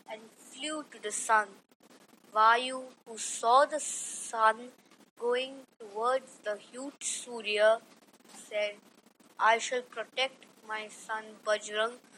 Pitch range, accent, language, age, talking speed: 220-260 Hz, native, Marathi, 20-39, 110 wpm